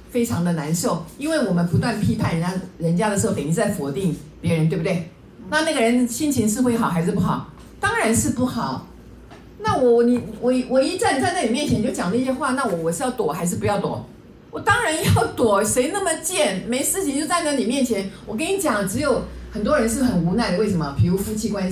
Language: Chinese